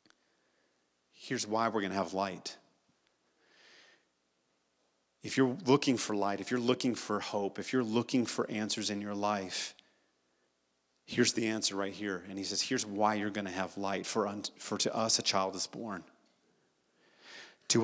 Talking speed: 160 wpm